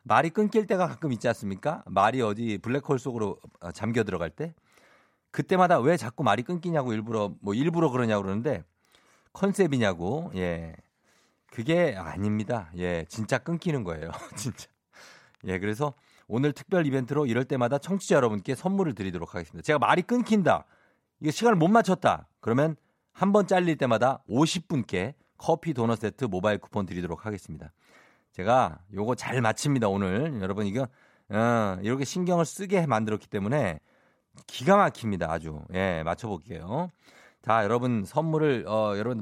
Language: Korean